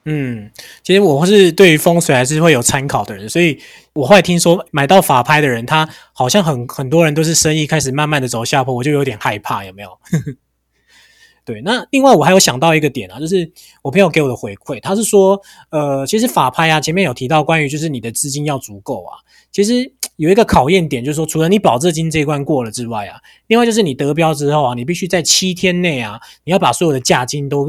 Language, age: Chinese, 20-39